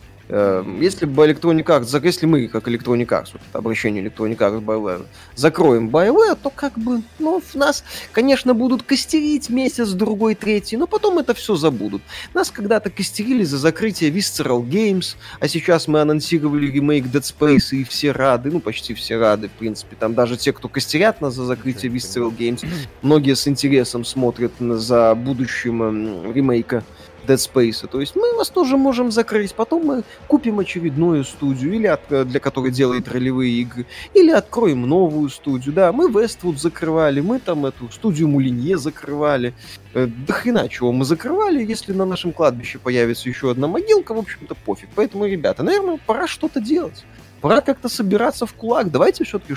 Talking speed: 165 wpm